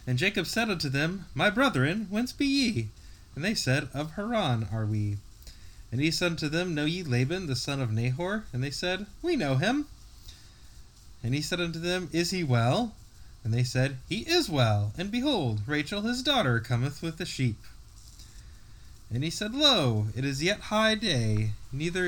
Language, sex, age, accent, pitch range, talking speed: English, male, 20-39, American, 110-165 Hz, 185 wpm